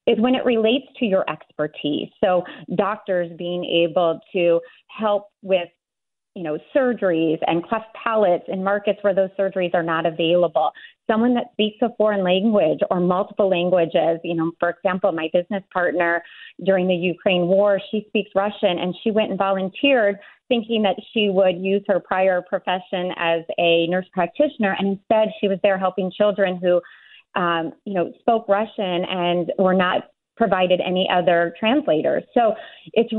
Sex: female